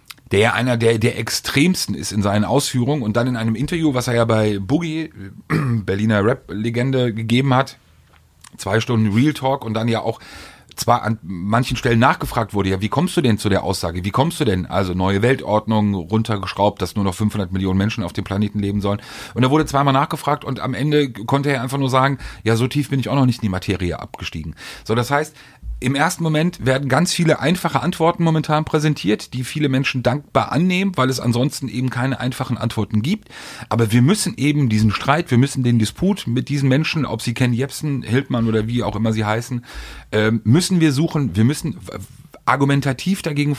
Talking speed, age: 200 wpm, 40-59